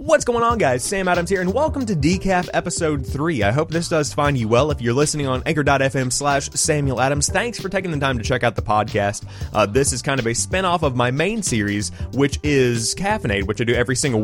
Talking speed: 240 wpm